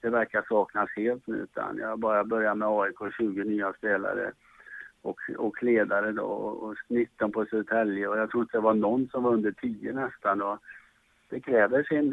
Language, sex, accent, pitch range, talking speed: English, male, Norwegian, 110-125 Hz, 195 wpm